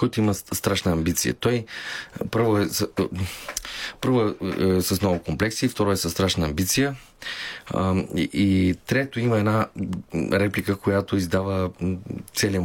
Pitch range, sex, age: 90-120 Hz, male, 30-49